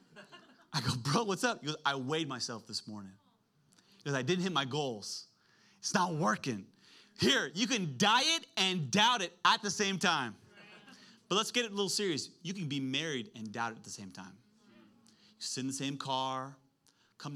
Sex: male